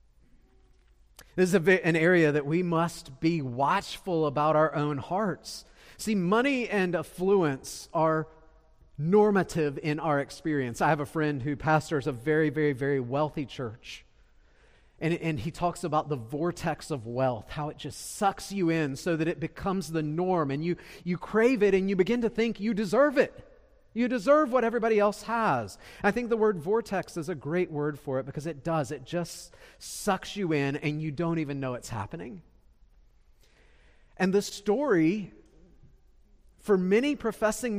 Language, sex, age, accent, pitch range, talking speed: English, male, 40-59, American, 140-195 Hz, 170 wpm